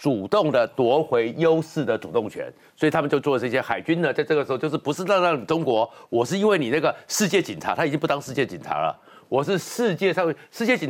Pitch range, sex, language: 140-195 Hz, male, Chinese